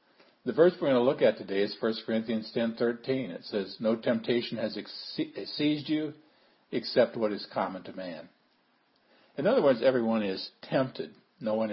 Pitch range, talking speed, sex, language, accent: 100-125 Hz, 170 wpm, male, English, American